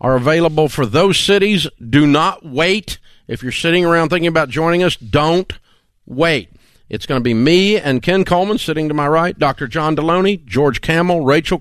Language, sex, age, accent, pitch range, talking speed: English, male, 50-69, American, 130-165 Hz, 180 wpm